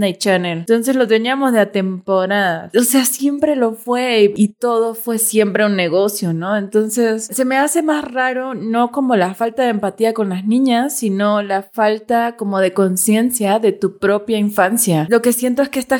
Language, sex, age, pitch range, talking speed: Spanish, female, 20-39, 195-235 Hz, 190 wpm